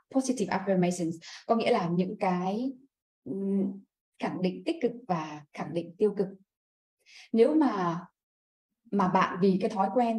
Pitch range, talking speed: 190-260 Hz, 140 wpm